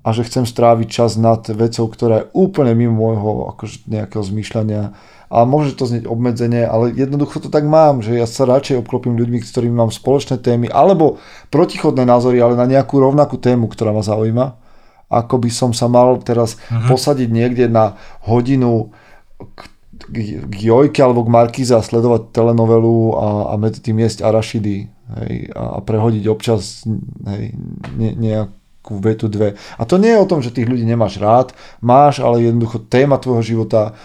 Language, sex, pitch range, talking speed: Slovak, male, 110-125 Hz, 165 wpm